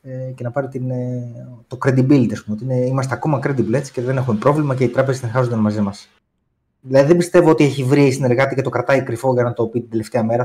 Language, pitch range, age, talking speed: Greek, 115-145 Hz, 20-39, 220 wpm